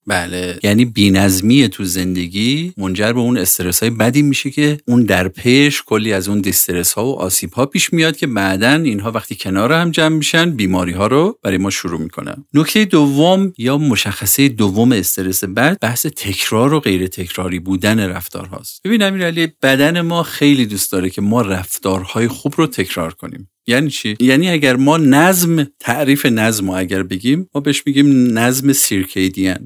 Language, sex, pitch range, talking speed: Persian, male, 95-145 Hz, 175 wpm